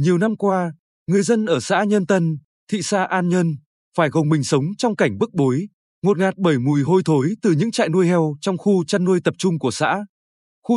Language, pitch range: Vietnamese, 155-205 Hz